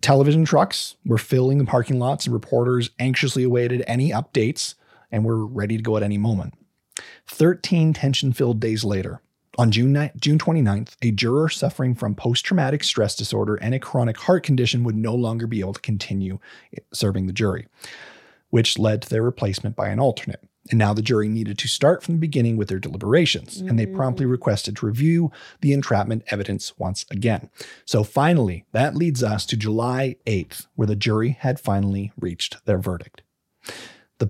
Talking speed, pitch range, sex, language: 175 wpm, 105-135 Hz, male, English